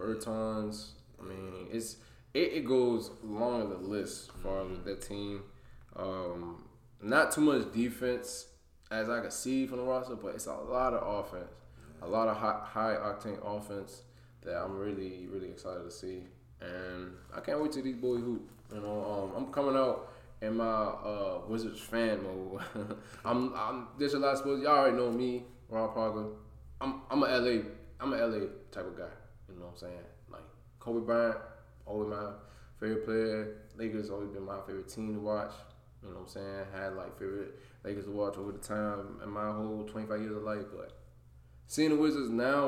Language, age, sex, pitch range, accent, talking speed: English, 20-39, male, 100-130 Hz, American, 190 wpm